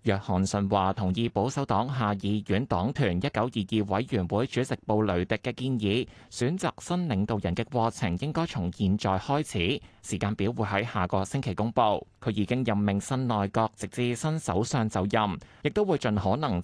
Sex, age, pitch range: male, 20-39, 100-135 Hz